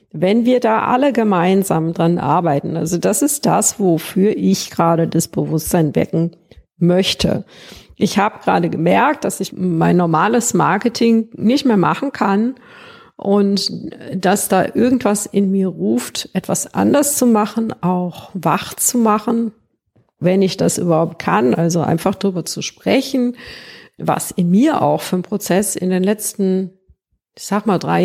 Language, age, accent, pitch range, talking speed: German, 50-69, German, 175-210 Hz, 150 wpm